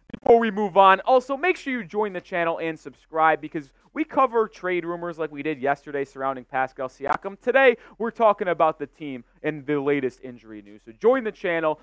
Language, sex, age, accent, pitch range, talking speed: English, male, 20-39, American, 130-185 Hz, 200 wpm